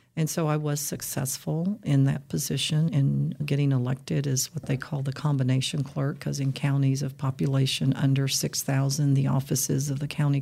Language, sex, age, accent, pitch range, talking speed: English, female, 50-69, American, 135-150 Hz, 175 wpm